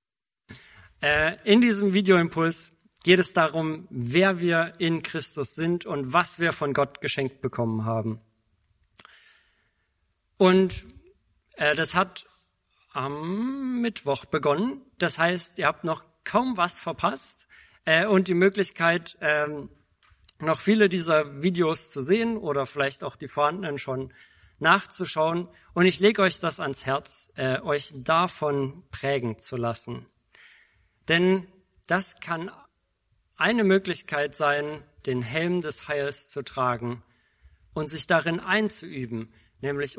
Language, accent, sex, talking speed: German, German, male, 115 wpm